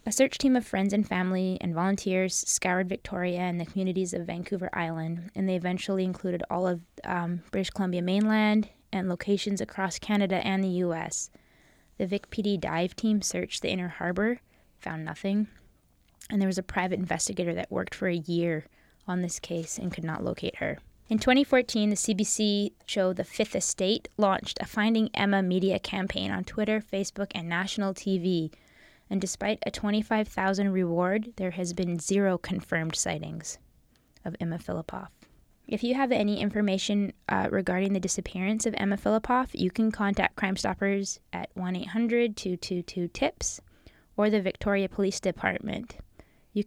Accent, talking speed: American, 155 wpm